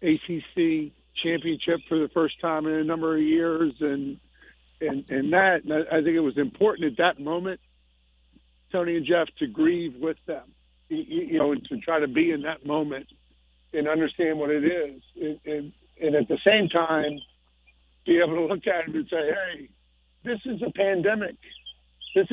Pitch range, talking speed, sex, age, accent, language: 135-170 Hz, 180 wpm, male, 50-69, American, English